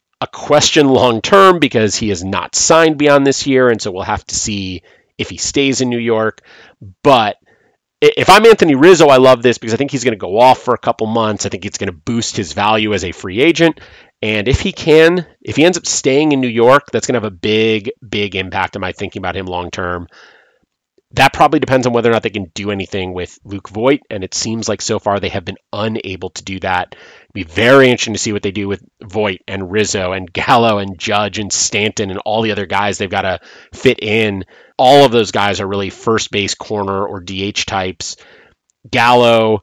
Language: English